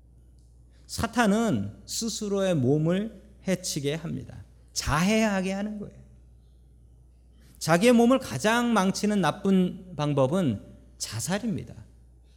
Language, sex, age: Korean, male, 40-59